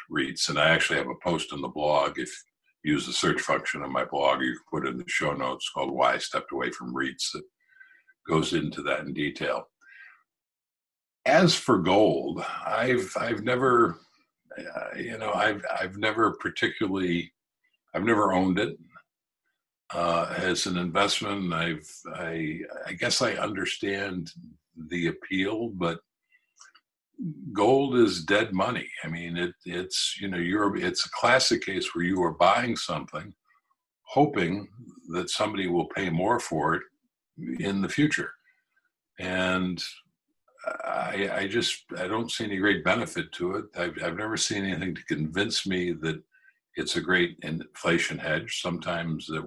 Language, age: English, 50-69